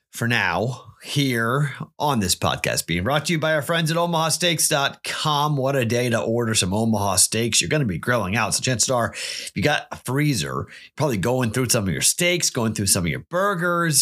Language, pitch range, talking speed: English, 95-135 Hz, 210 wpm